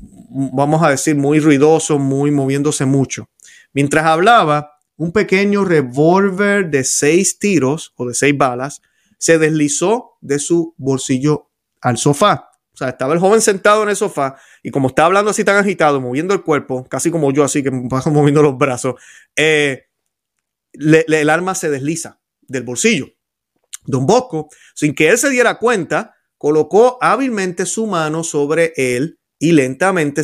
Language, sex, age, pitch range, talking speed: Spanish, male, 30-49, 135-170 Hz, 160 wpm